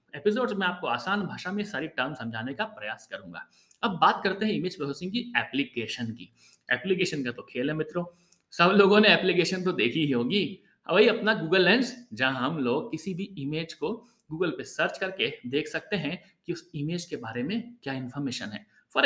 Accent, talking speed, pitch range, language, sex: native, 100 wpm, 160-230 Hz, Hindi, male